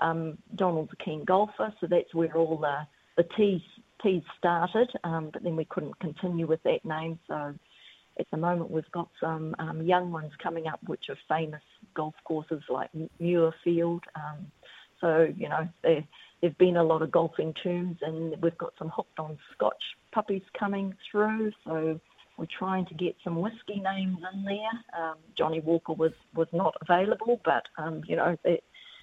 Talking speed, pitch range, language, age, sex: 180 wpm, 160-190 Hz, English, 50-69, female